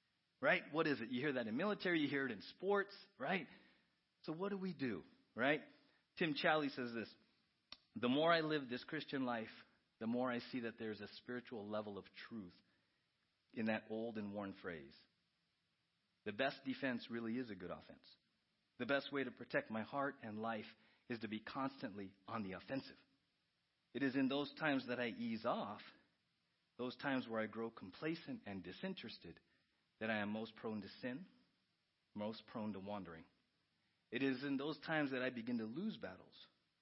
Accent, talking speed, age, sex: American, 185 wpm, 40-59, male